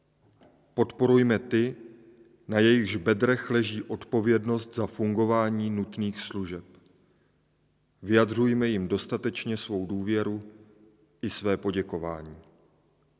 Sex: male